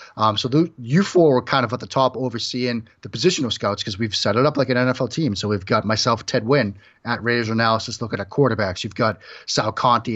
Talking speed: 235 wpm